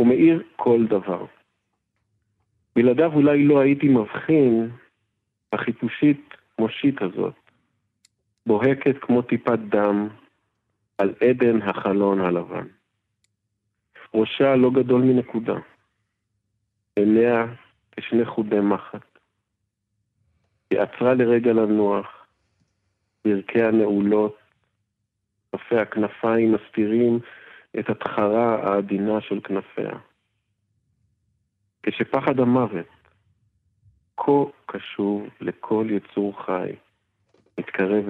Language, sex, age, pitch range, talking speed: Hebrew, male, 50-69, 105-115 Hz, 75 wpm